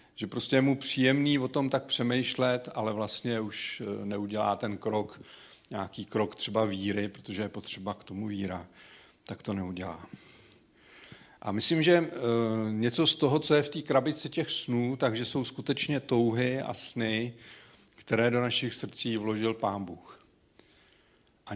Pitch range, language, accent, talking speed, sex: 105-135 Hz, Czech, native, 155 wpm, male